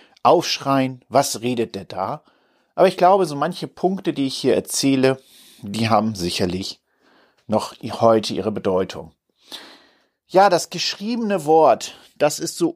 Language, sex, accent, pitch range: German, male, German, 120-165 Hz